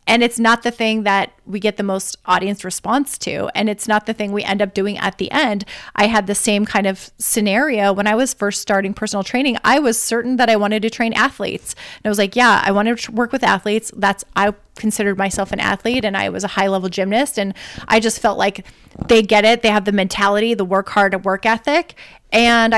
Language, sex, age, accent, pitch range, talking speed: English, female, 30-49, American, 205-240 Hz, 235 wpm